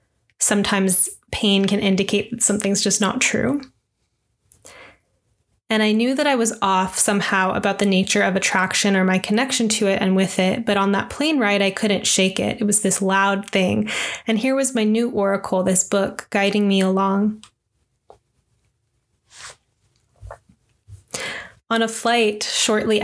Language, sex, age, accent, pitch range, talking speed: English, female, 20-39, American, 195-220 Hz, 155 wpm